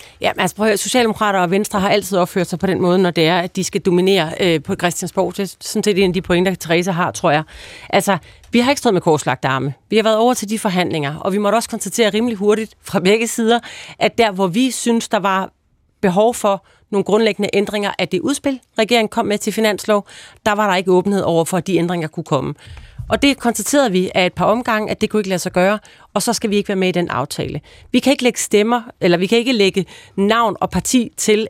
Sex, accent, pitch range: female, native, 180-220 Hz